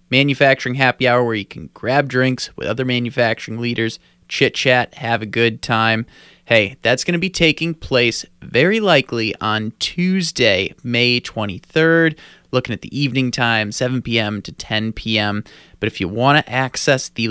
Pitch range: 110-135 Hz